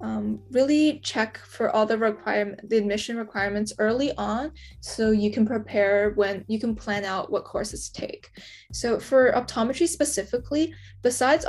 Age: 10-29